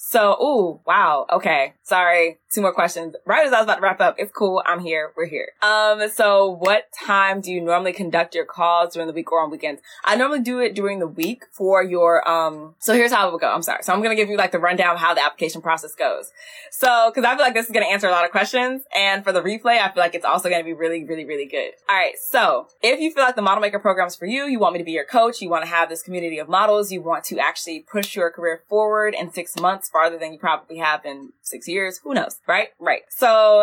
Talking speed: 270 wpm